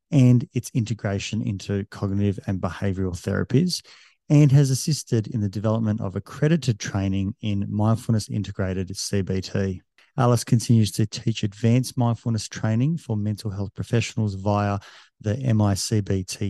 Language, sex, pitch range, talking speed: English, male, 100-120 Hz, 125 wpm